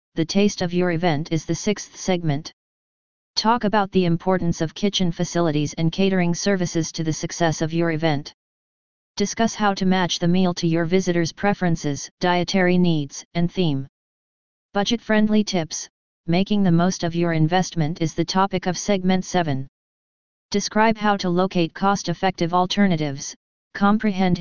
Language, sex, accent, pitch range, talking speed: English, female, American, 165-190 Hz, 145 wpm